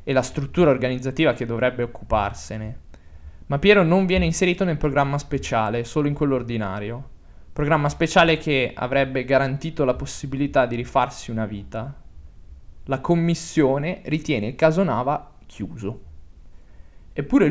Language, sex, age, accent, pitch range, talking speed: Italian, male, 20-39, native, 110-150 Hz, 130 wpm